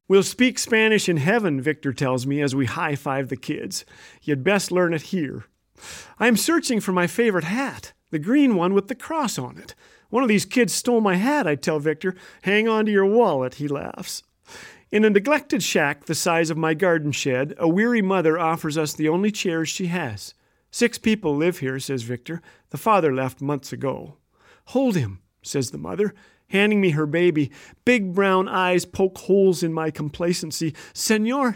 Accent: American